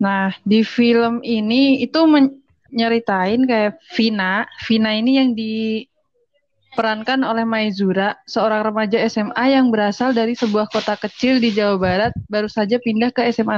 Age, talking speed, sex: 20-39, 135 wpm, female